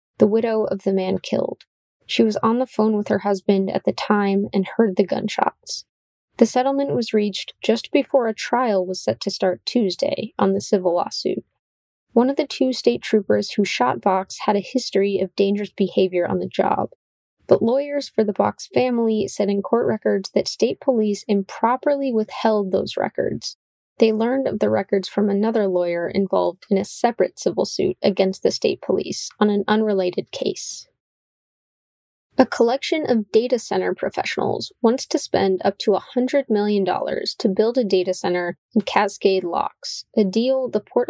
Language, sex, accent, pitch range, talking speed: English, female, American, 195-230 Hz, 175 wpm